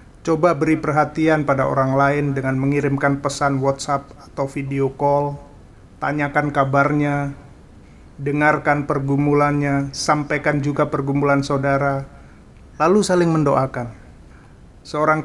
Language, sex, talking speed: Indonesian, male, 100 wpm